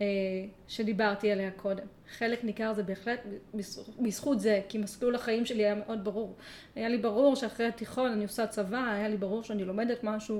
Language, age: Hebrew, 30-49